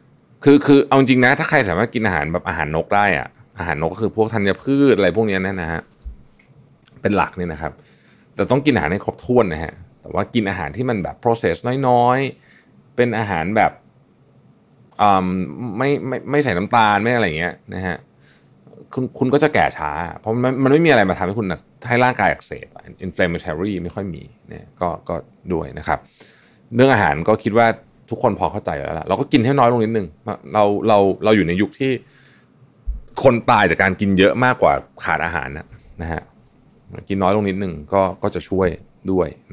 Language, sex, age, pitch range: Thai, male, 20-39, 85-120 Hz